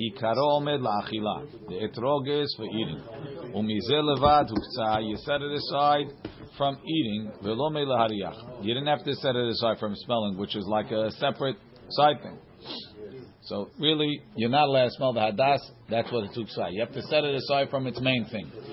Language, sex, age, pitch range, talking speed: English, male, 50-69, 110-145 Hz, 160 wpm